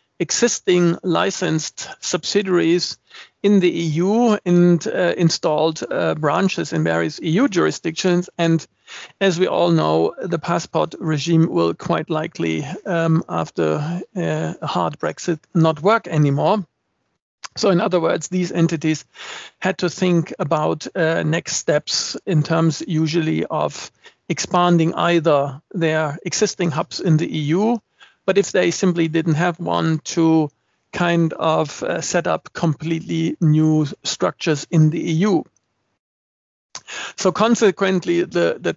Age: 50-69